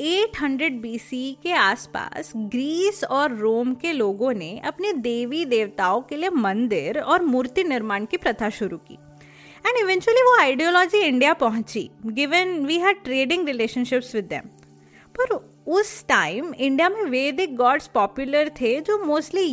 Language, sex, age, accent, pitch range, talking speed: Hindi, female, 20-39, native, 235-355 Hz, 120 wpm